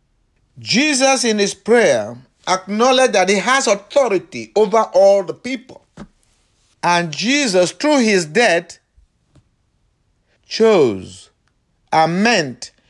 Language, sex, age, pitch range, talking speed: English, male, 50-69, 135-215 Hz, 100 wpm